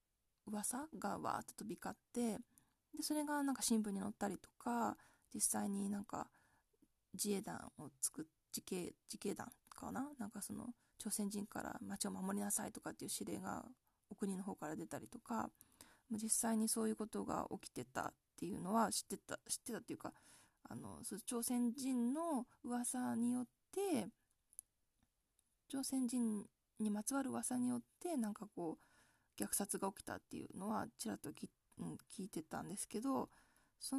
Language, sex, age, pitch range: Japanese, female, 20-39, 215-280 Hz